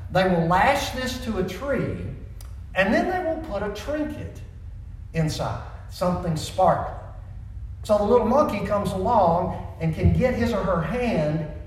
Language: English